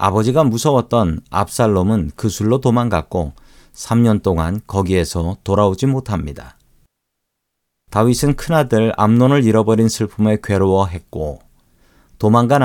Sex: male